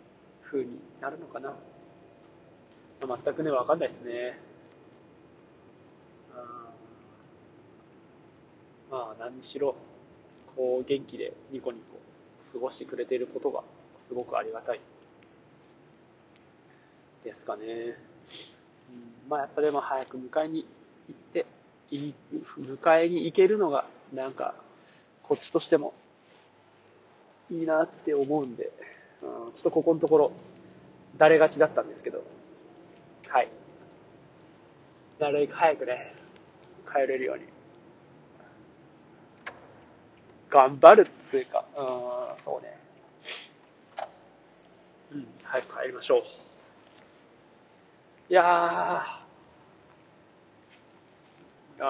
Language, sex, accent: Japanese, male, native